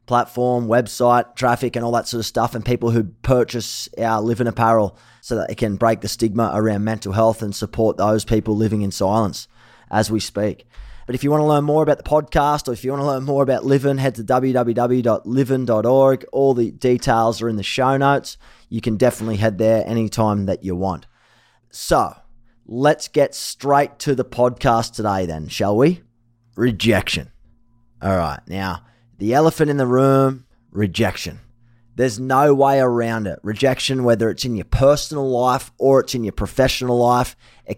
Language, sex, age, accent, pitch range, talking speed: English, male, 20-39, Australian, 110-130 Hz, 185 wpm